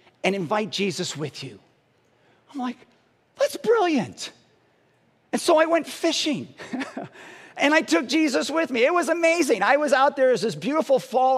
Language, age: English, 50-69